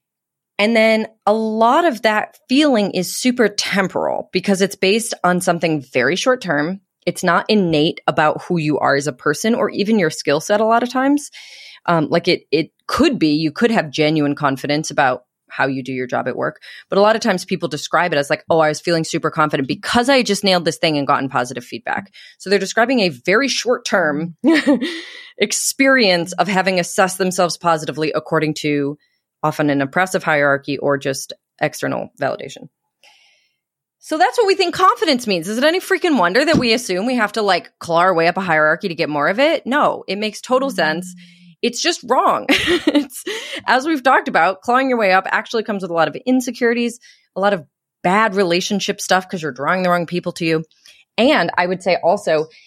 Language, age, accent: English, 30-49, American